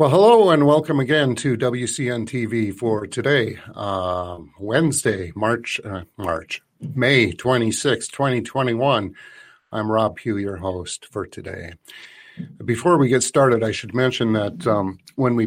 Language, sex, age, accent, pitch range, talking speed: English, male, 50-69, American, 95-120 Hz, 140 wpm